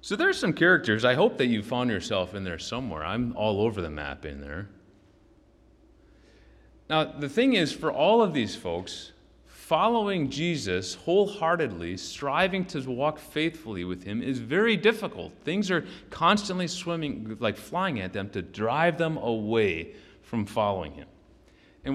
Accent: American